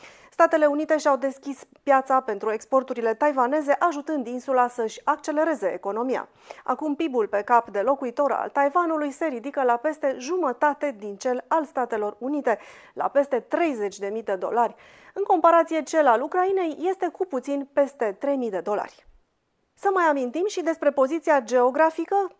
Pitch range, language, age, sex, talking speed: 230-295 Hz, Romanian, 30-49, female, 145 wpm